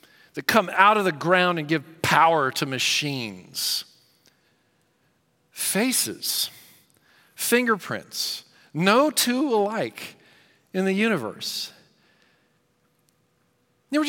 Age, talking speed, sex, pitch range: 40-59, 90 wpm, male, 150-190 Hz